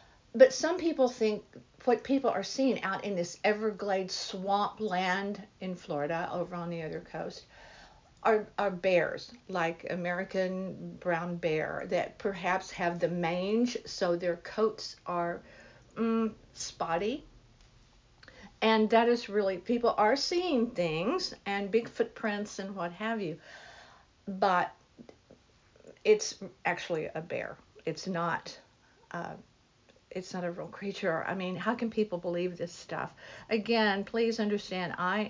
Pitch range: 175-220 Hz